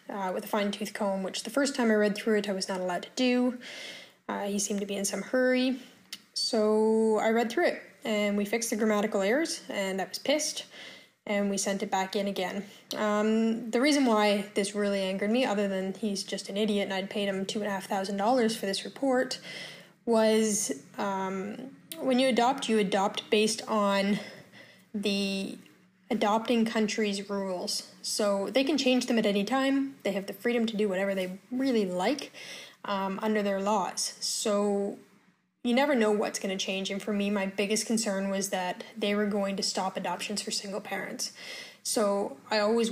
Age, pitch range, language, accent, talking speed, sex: 10-29, 195-225 Hz, English, American, 185 wpm, female